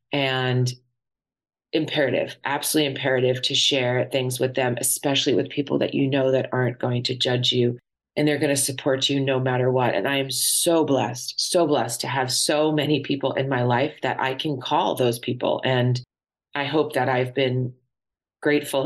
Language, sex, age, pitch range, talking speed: English, female, 30-49, 130-145 Hz, 185 wpm